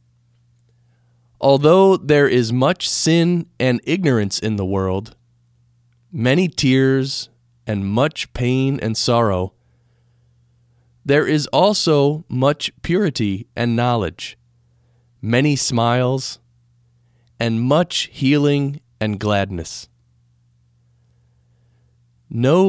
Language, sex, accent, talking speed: English, male, American, 85 wpm